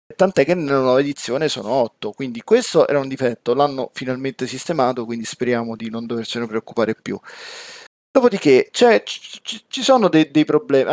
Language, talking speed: Italian, 160 wpm